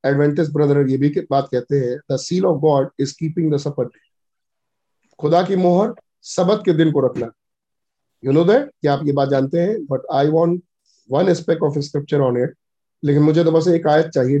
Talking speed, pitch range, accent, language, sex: 140 wpm, 140-170 Hz, native, Hindi, male